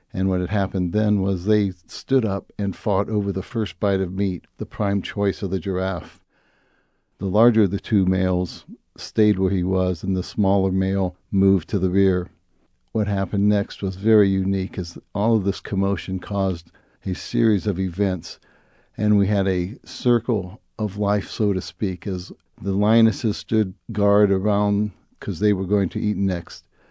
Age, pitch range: 60-79, 95-105 Hz